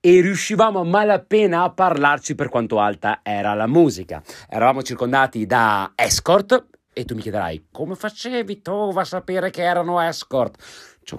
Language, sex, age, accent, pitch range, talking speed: Italian, male, 30-49, native, 100-170 Hz, 155 wpm